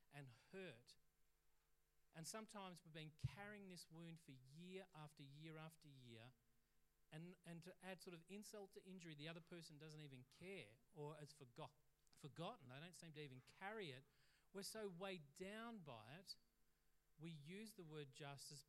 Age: 40-59